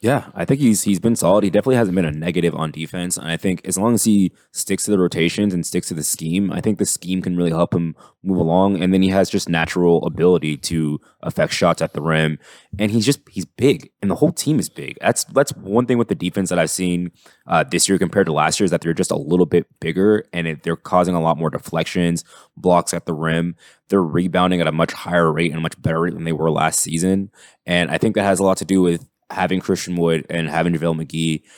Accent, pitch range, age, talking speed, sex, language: American, 85-95 Hz, 20-39, 255 wpm, male, English